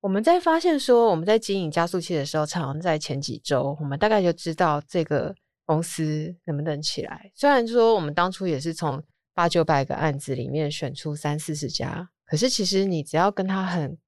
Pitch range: 150-190 Hz